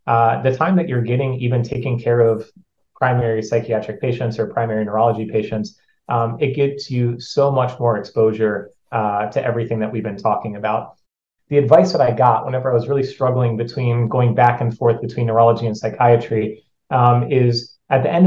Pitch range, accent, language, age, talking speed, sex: 115-135 Hz, American, English, 30-49, 185 wpm, male